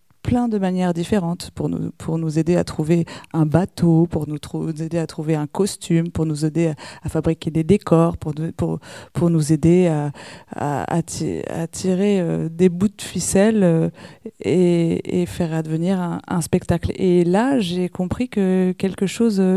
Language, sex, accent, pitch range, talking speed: French, female, French, 160-190 Hz, 190 wpm